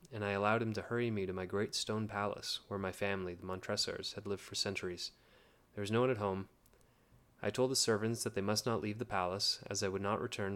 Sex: male